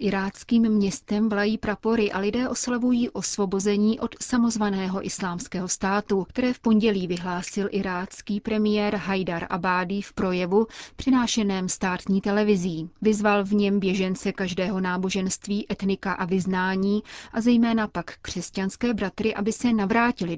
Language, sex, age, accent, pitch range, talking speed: Czech, female, 30-49, native, 190-215 Hz, 125 wpm